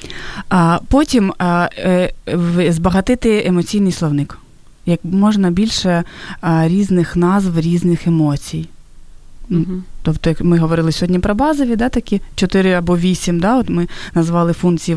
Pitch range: 165-205 Hz